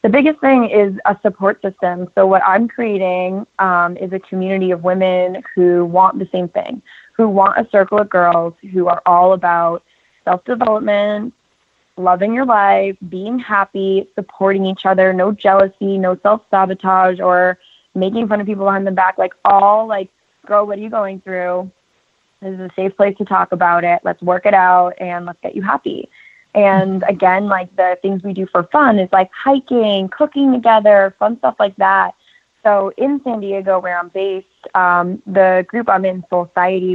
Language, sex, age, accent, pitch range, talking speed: English, female, 20-39, American, 175-200 Hz, 180 wpm